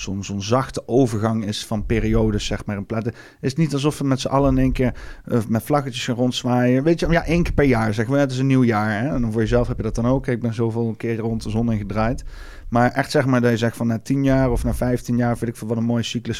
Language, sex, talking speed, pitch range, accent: Dutch, male, 285 wpm, 120-145 Hz, Dutch